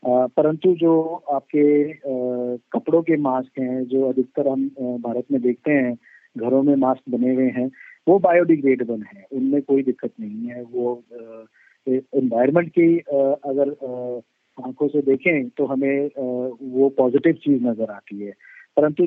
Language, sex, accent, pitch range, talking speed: Hindi, male, native, 130-145 Hz, 160 wpm